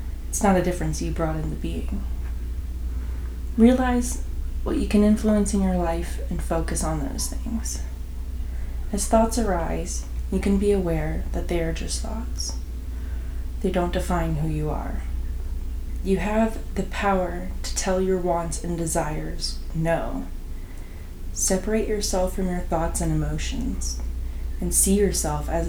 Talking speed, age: 145 wpm, 20-39